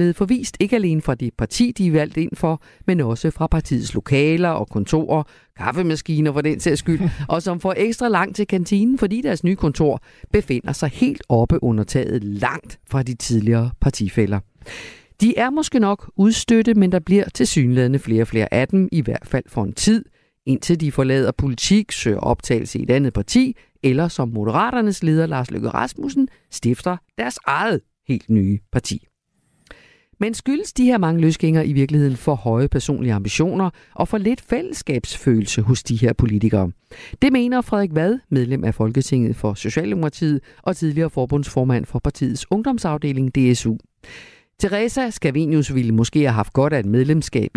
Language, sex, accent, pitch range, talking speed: Danish, female, native, 120-190 Hz, 170 wpm